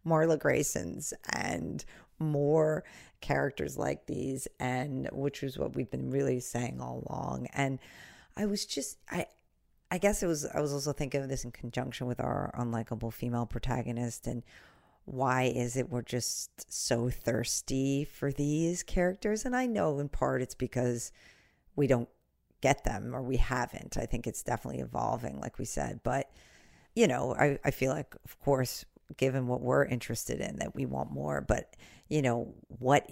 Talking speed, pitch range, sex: 170 wpm, 120-140 Hz, female